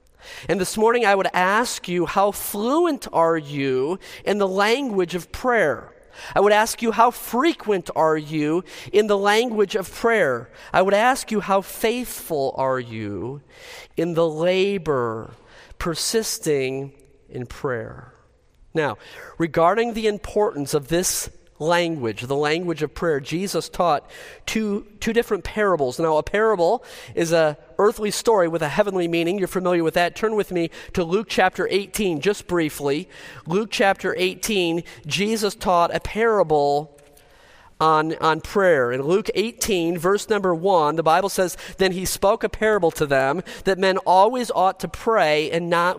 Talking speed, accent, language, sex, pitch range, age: 155 wpm, American, English, male, 165-210 Hz, 40-59